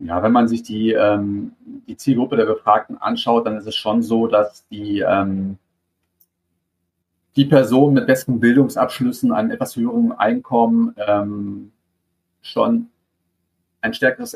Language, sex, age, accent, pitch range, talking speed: German, male, 40-59, German, 105-150 Hz, 135 wpm